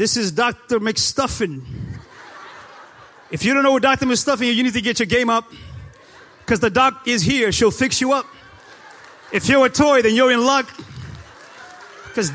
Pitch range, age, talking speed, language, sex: 215-265 Hz, 30-49, 180 wpm, English, male